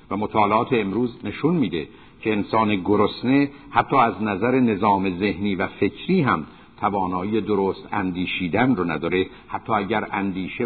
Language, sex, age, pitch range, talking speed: Persian, male, 50-69, 100-130 Hz, 135 wpm